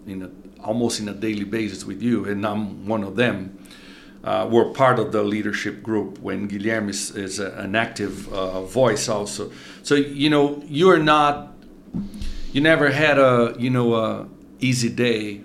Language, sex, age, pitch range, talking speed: English, male, 50-69, 105-125 Hz, 175 wpm